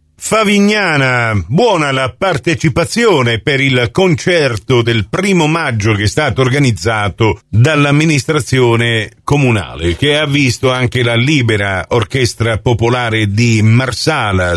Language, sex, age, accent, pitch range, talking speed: Italian, male, 50-69, native, 105-135 Hz, 105 wpm